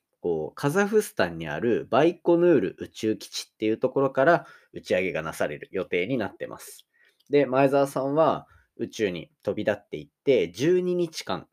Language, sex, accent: Japanese, male, native